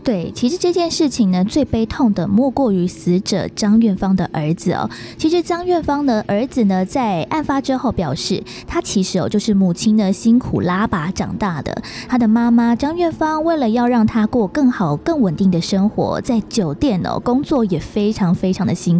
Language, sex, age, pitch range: Chinese, female, 20-39, 195-270 Hz